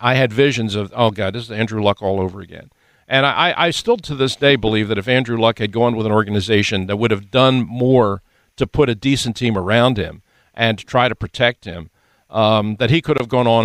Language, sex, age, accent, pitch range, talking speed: English, male, 50-69, American, 105-130 Hz, 240 wpm